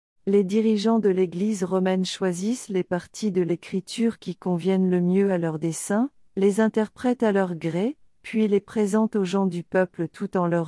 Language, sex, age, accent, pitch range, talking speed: French, female, 50-69, French, 180-220 Hz, 180 wpm